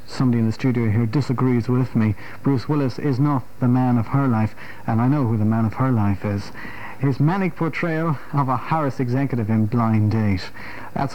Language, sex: English, male